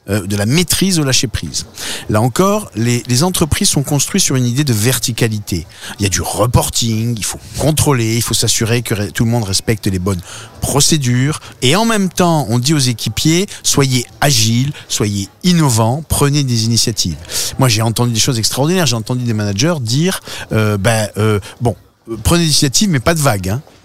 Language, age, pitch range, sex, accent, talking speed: French, 50-69, 110-150 Hz, male, French, 185 wpm